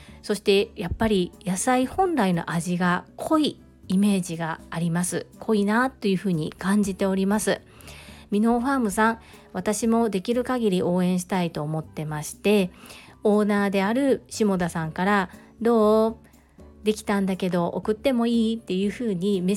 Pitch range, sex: 180-230 Hz, female